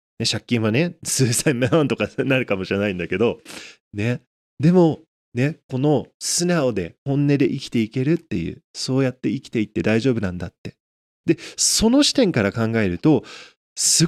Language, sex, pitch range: Japanese, male, 105-140 Hz